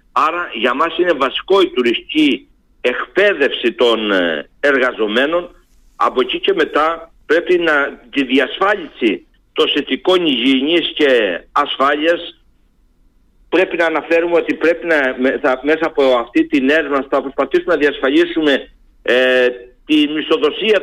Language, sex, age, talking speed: Greek, male, 60-79, 120 wpm